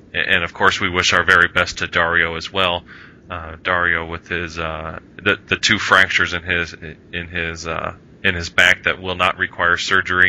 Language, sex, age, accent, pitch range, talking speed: English, male, 20-39, American, 85-95 Hz, 200 wpm